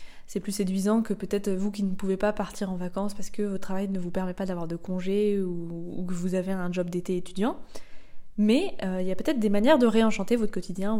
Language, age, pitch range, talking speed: French, 20-39, 185-210 Hz, 250 wpm